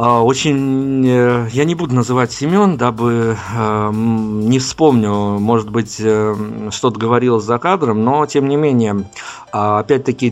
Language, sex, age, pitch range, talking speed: Russian, male, 50-69, 110-140 Hz, 115 wpm